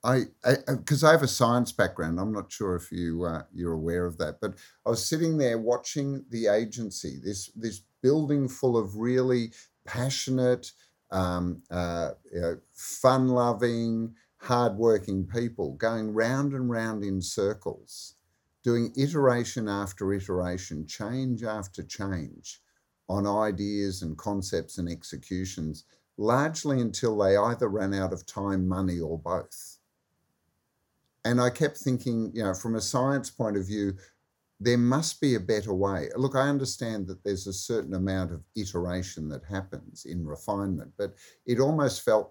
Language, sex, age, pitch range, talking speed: English, male, 50-69, 95-125 Hz, 150 wpm